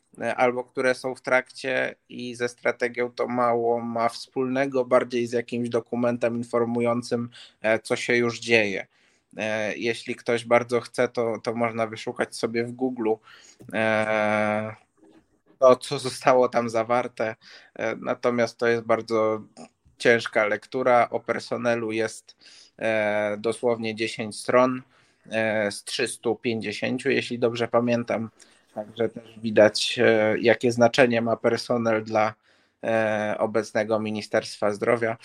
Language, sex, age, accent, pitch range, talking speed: Polish, male, 20-39, native, 110-125 Hz, 110 wpm